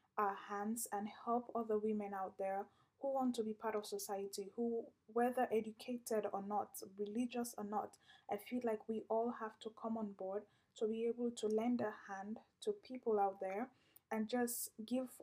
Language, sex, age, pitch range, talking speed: English, female, 10-29, 205-235 Hz, 185 wpm